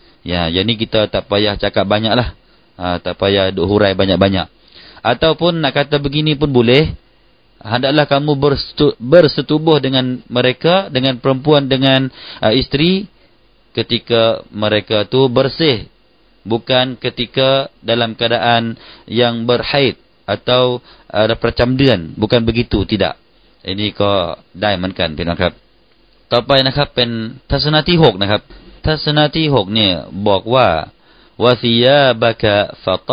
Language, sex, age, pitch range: Thai, male, 30-49, 95-130 Hz